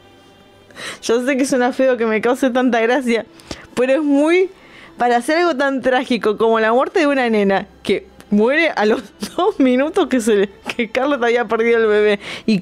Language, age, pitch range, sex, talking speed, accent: Spanish, 20-39, 215-285 Hz, female, 195 wpm, Argentinian